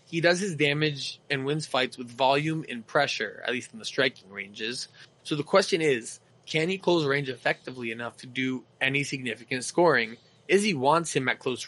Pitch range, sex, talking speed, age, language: 125-150 Hz, male, 190 wpm, 20-39, English